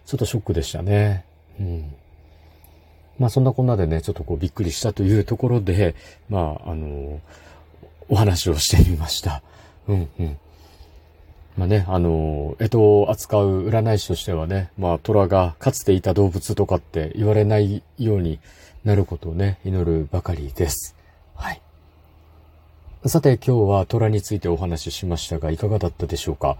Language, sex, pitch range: Japanese, male, 80-105 Hz